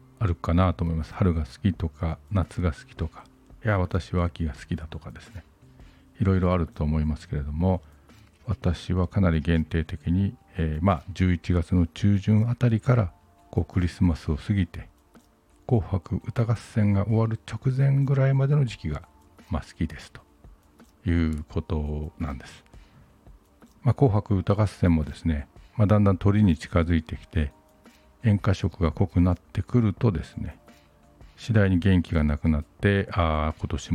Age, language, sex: 50-69, Japanese, male